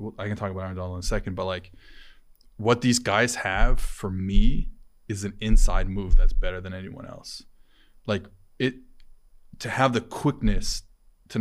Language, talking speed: English, 175 wpm